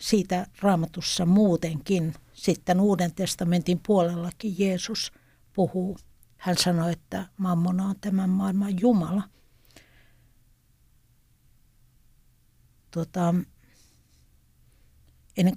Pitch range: 160-210 Hz